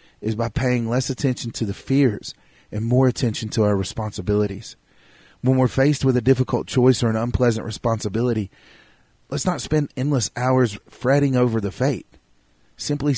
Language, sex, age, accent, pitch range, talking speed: English, male, 40-59, American, 105-130 Hz, 160 wpm